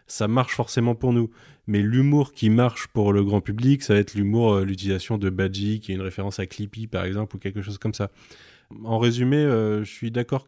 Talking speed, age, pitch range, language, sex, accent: 225 wpm, 20-39, 95-115 Hz, French, male, French